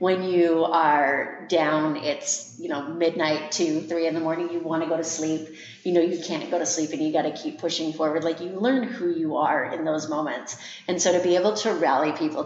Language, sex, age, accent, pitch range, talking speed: English, female, 30-49, American, 165-200 Hz, 240 wpm